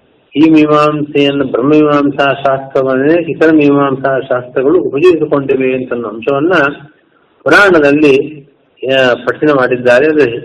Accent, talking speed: native, 85 wpm